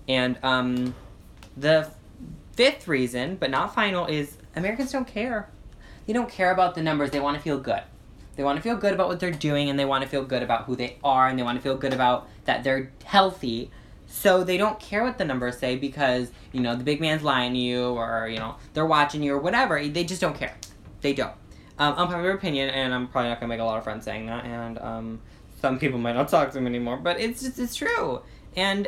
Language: English